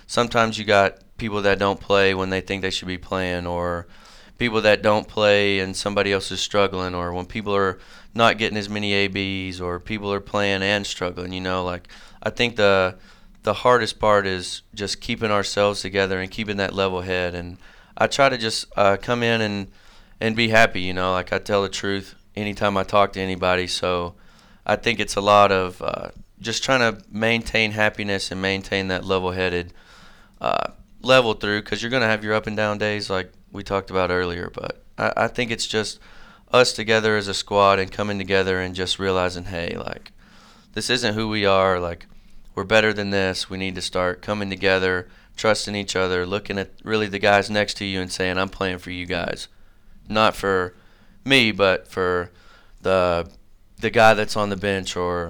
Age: 30-49